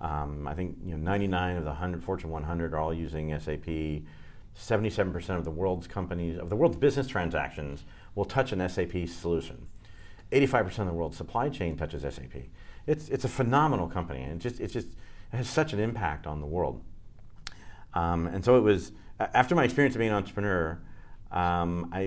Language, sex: English, male